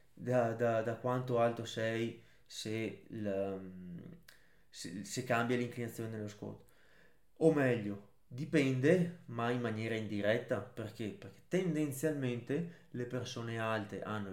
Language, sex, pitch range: Italian, male, 105-125 Hz